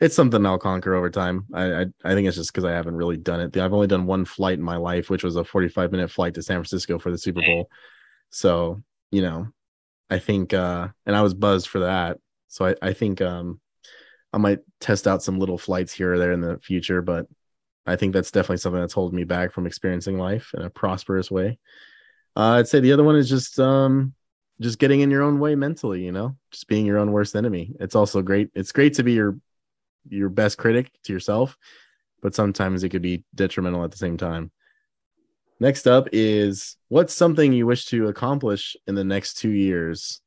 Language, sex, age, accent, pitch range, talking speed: English, male, 20-39, American, 90-105 Hz, 220 wpm